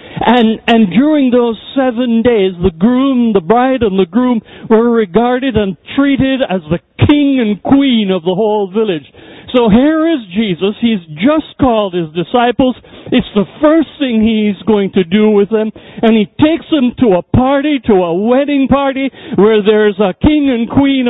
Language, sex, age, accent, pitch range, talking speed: English, male, 60-79, American, 195-255 Hz, 175 wpm